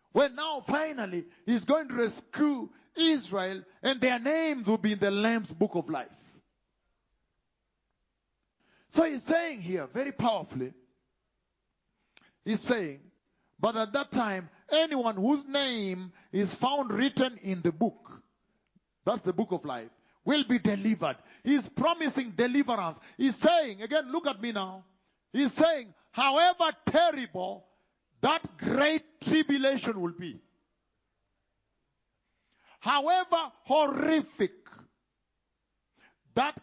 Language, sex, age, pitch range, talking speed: English, male, 50-69, 205-305 Hz, 115 wpm